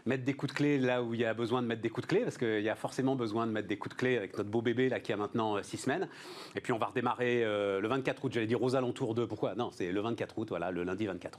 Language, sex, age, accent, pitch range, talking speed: French, male, 40-59, French, 120-165 Hz, 330 wpm